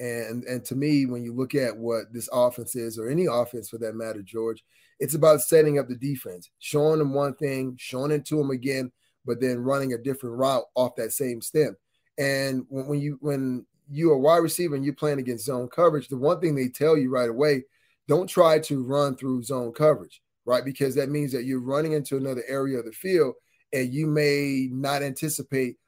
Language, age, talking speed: English, 30-49, 210 wpm